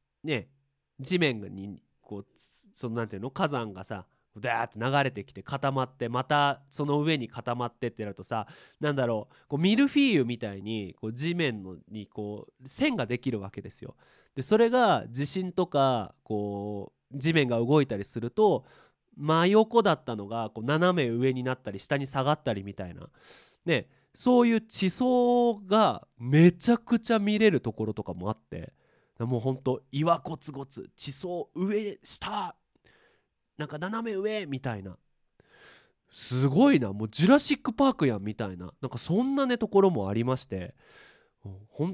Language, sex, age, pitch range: Japanese, male, 20-39, 115-180 Hz